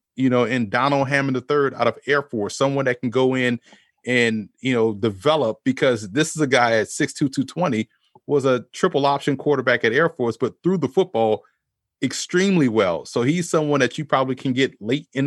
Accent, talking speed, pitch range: American, 205 wpm, 120-145 Hz